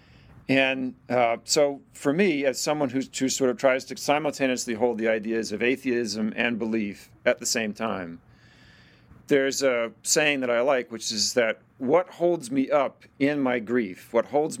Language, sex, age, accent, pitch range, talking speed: English, male, 50-69, American, 110-140 Hz, 175 wpm